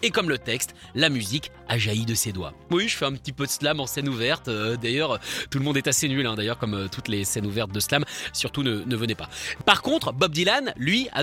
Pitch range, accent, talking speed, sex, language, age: 120-195 Hz, French, 260 wpm, male, French, 30-49